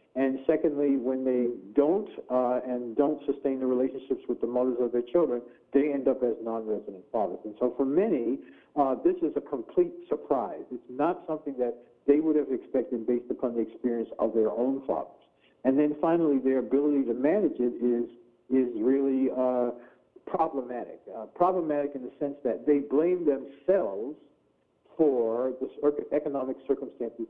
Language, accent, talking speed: English, American, 165 wpm